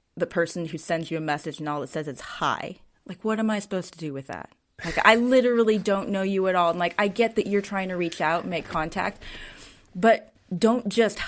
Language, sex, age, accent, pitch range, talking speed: English, female, 20-39, American, 165-220 Hz, 250 wpm